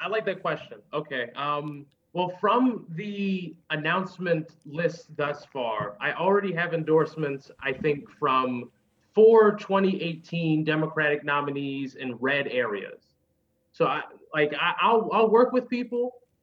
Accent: American